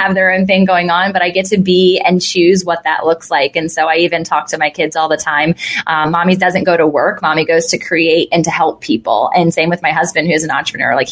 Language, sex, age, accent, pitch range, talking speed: English, female, 20-39, American, 170-245 Hz, 280 wpm